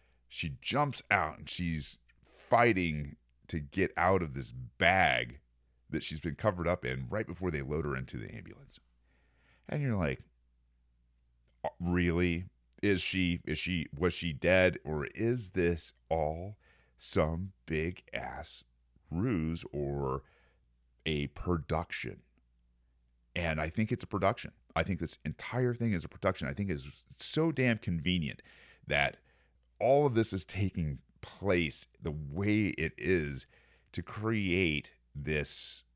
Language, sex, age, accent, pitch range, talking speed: English, male, 40-59, American, 65-90 Hz, 135 wpm